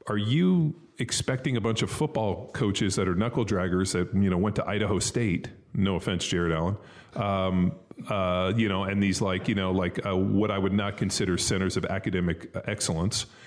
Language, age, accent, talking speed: English, 30-49, American, 190 wpm